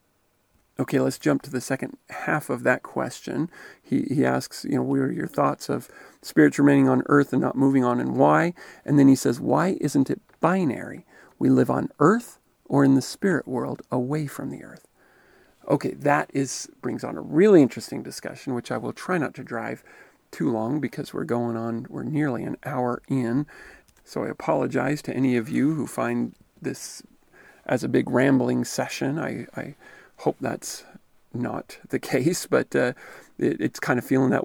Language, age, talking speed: English, 40-59, 190 wpm